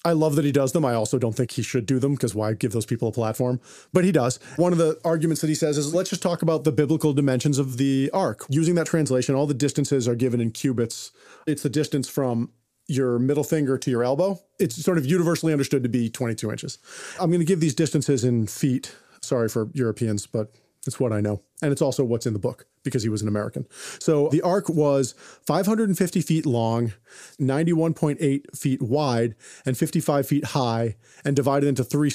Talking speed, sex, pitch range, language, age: 220 wpm, male, 130-175 Hz, English, 40-59